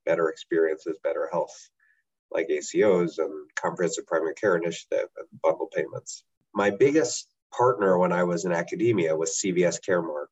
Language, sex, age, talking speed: English, male, 30-49, 145 wpm